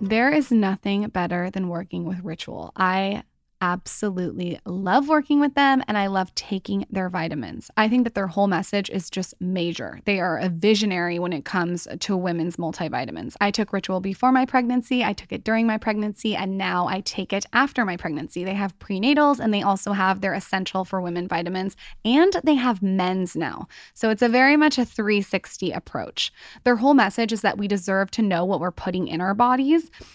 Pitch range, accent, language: 185-225 Hz, American, English